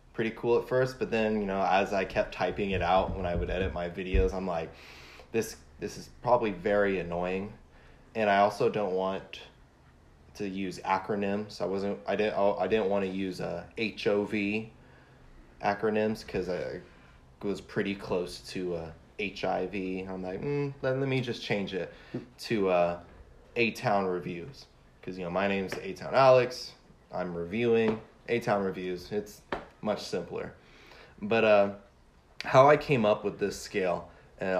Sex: male